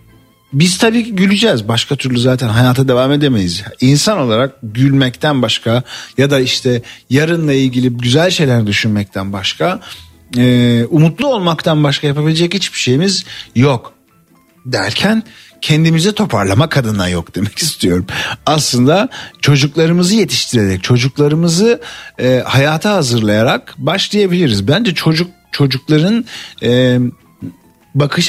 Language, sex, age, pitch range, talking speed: Turkish, male, 50-69, 110-160 Hz, 100 wpm